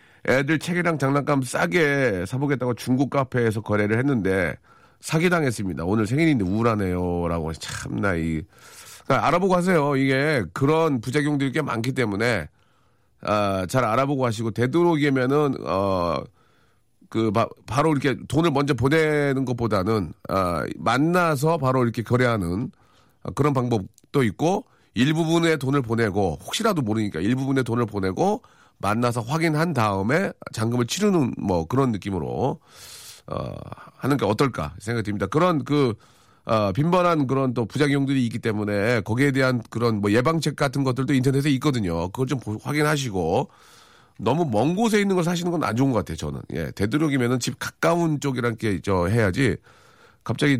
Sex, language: male, Korean